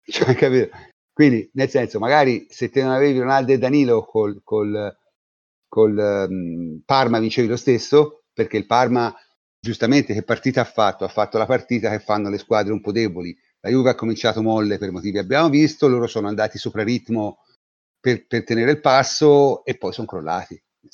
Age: 40-59